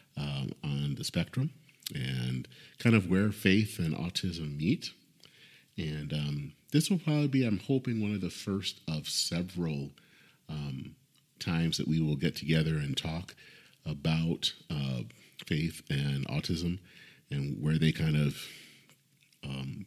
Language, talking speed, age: English, 140 wpm, 40-59